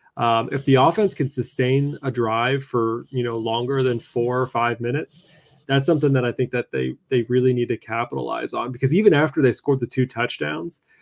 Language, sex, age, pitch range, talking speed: English, male, 20-39, 120-145 Hz, 205 wpm